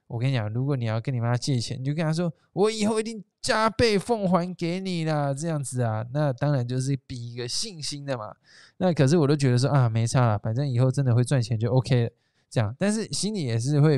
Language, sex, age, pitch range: Chinese, male, 20-39, 125-165 Hz